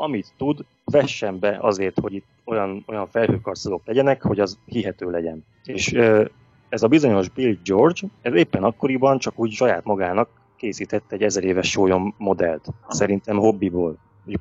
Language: Hungarian